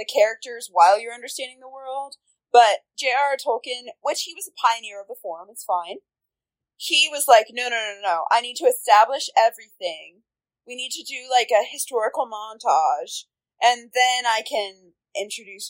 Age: 20-39